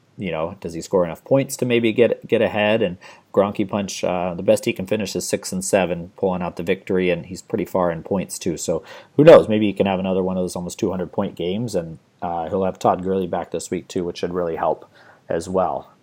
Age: 40-59